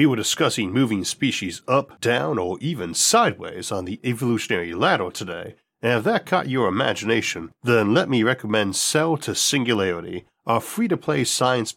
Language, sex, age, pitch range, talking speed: English, male, 40-59, 110-155 Hz, 170 wpm